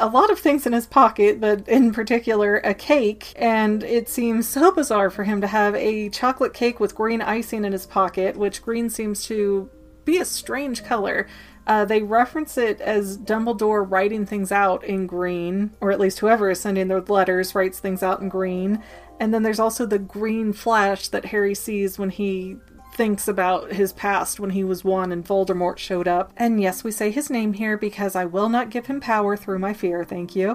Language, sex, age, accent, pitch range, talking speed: English, female, 30-49, American, 200-230 Hz, 205 wpm